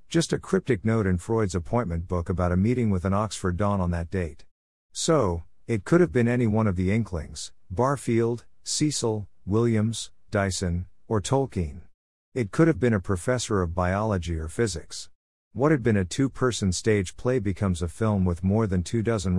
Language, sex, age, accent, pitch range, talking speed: English, male, 50-69, American, 90-115 Hz, 185 wpm